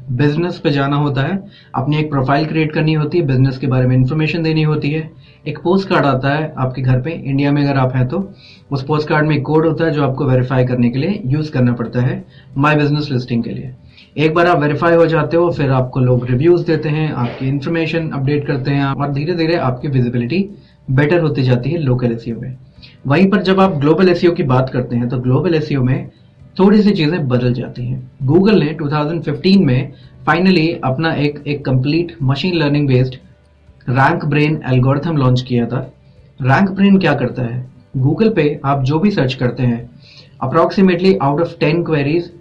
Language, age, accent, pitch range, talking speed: Hindi, 30-49, native, 130-160 Hz, 200 wpm